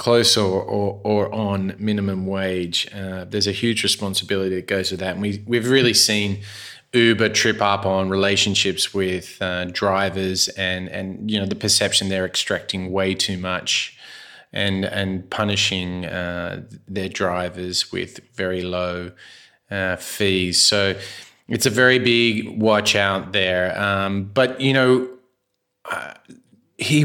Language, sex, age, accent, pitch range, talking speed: English, male, 20-39, Australian, 95-115 Hz, 140 wpm